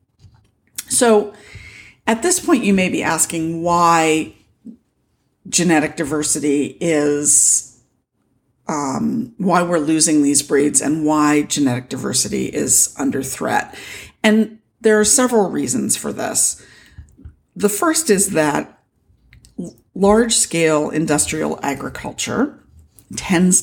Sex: female